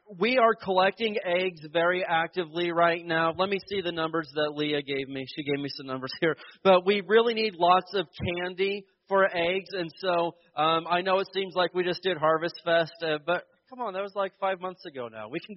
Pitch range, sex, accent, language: 160-195 Hz, male, American, English